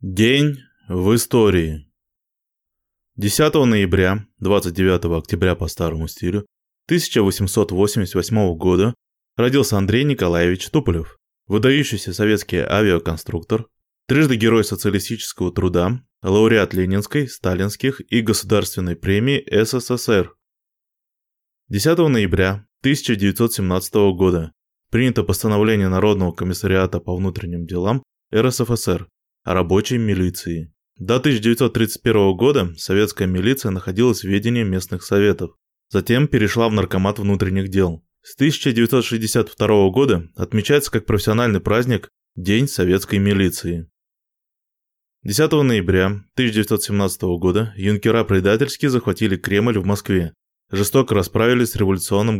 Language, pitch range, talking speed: Russian, 95-115 Hz, 95 wpm